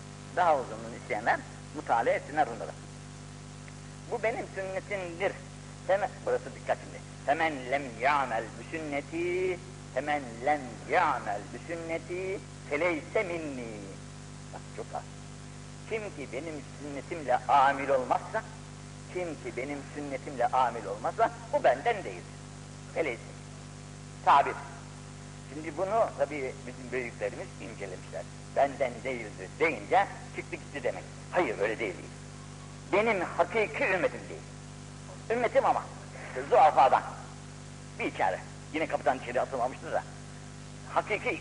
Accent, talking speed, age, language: native, 110 wpm, 60-79, Turkish